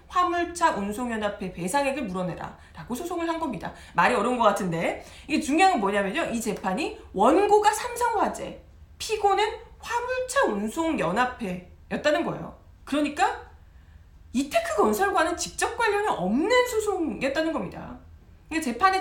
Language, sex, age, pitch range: Korean, female, 40-59, 230-375 Hz